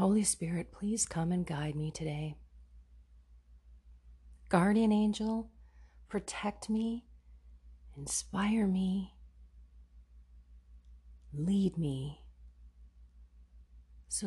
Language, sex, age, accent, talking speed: English, female, 40-59, American, 70 wpm